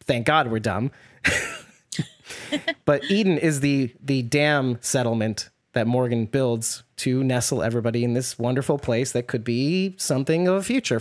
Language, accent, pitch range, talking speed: English, American, 120-150 Hz, 155 wpm